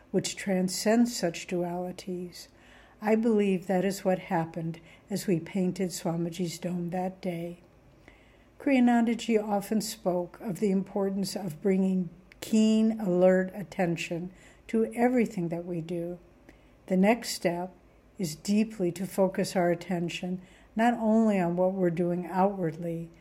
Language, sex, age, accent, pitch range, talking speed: English, female, 60-79, American, 175-210 Hz, 125 wpm